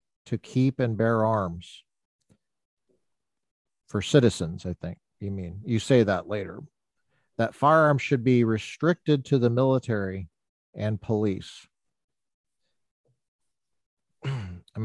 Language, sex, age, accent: English, male, 50-69, American